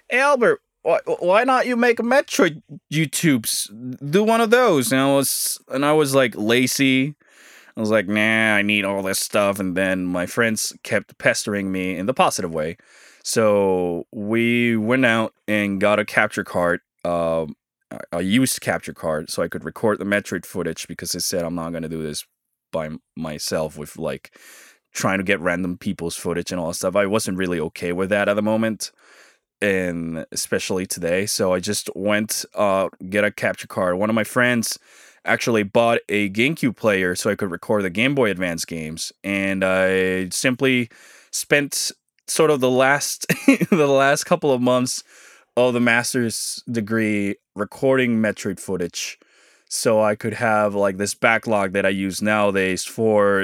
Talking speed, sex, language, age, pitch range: 175 wpm, male, English, 20-39, 95-125 Hz